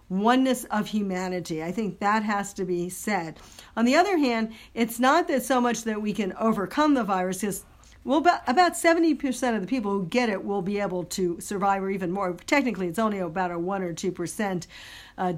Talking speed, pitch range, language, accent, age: 200 wpm, 190-240 Hz, English, American, 50-69